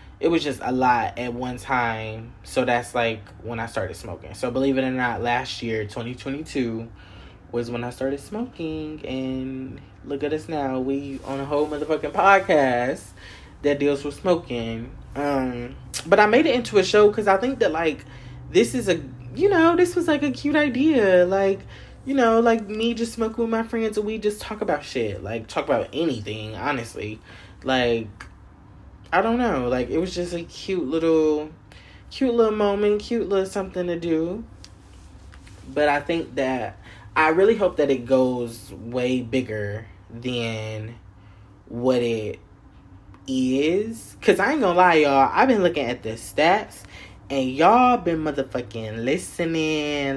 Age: 20-39